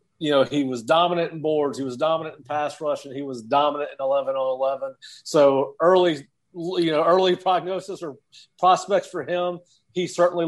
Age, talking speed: 40-59, 190 wpm